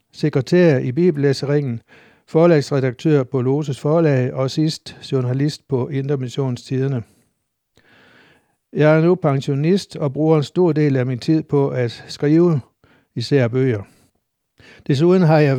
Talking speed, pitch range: 125 wpm, 130-155 Hz